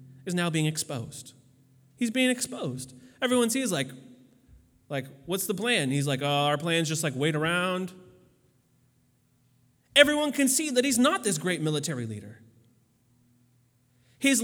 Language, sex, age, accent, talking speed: English, male, 30-49, American, 145 wpm